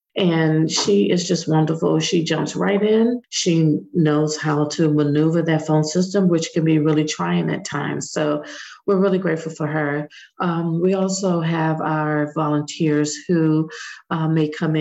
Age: 50-69